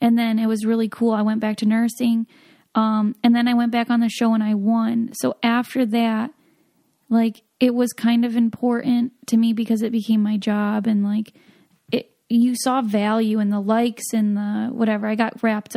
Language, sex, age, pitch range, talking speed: English, female, 10-29, 215-240 Hz, 205 wpm